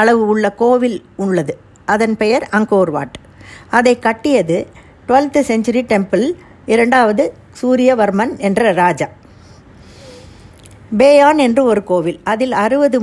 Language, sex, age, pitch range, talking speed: Tamil, female, 50-69, 180-250 Hz, 95 wpm